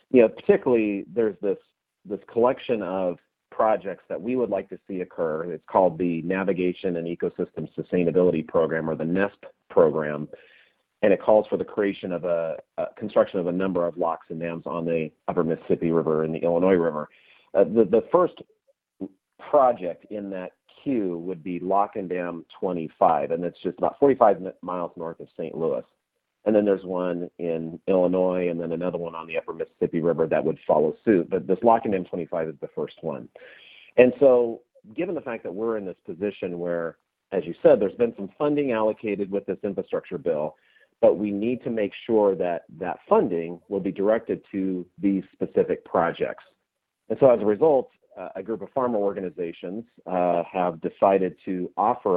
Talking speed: 180 wpm